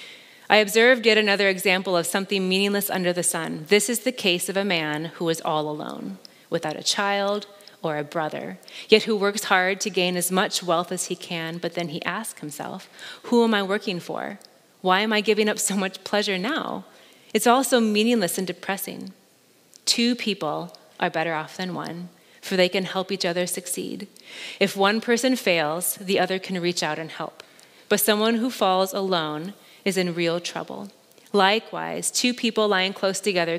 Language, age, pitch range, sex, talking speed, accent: English, 30-49, 170-210 Hz, female, 190 wpm, American